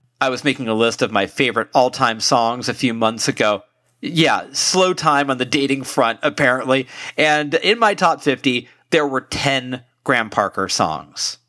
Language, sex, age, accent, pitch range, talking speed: English, male, 40-59, American, 120-155 Hz, 170 wpm